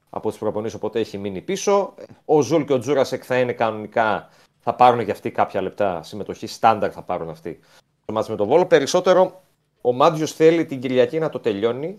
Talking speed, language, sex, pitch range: 200 wpm, Greek, male, 115-150 Hz